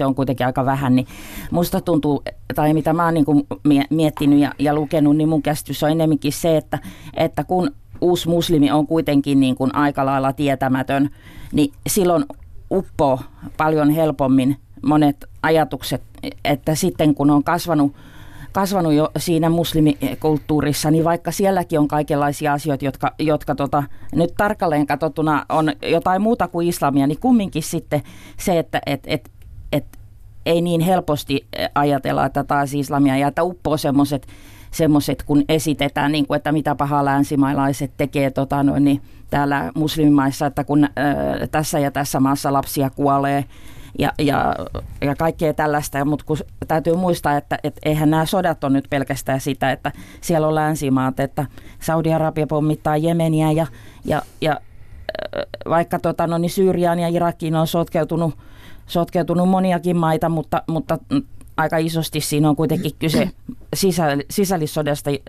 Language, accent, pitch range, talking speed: Finnish, native, 140-160 Hz, 145 wpm